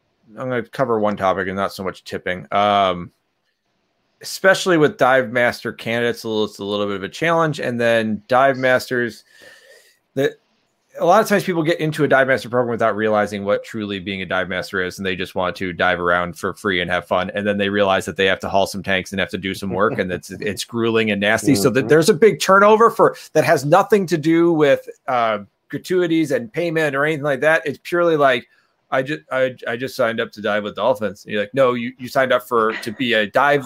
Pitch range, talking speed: 105-165 Hz, 240 wpm